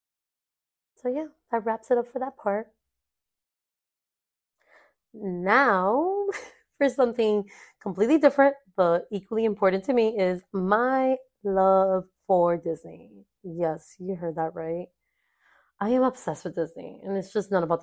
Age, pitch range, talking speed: 20-39, 185-230 Hz, 130 wpm